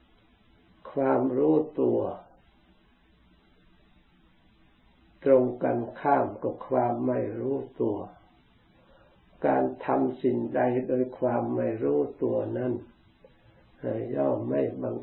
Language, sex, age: Thai, male, 60-79